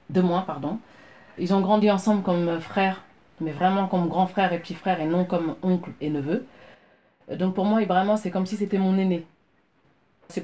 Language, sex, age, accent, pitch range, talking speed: French, female, 30-49, French, 155-195 Hz, 195 wpm